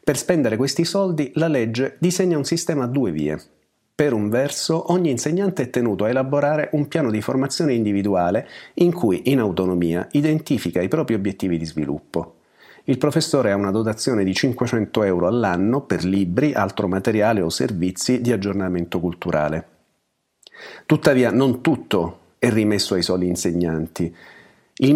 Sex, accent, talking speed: male, native, 150 wpm